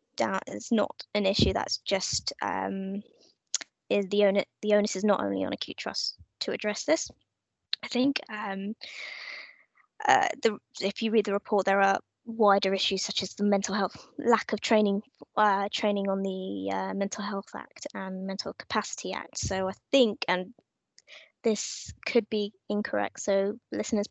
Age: 20-39